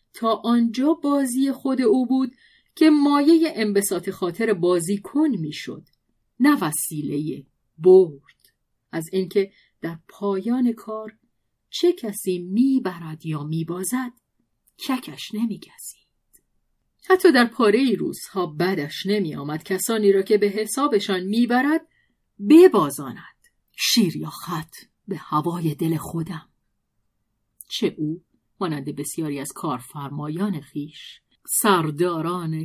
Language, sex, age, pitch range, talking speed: Persian, female, 40-59, 165-235 Hz, 110 wpm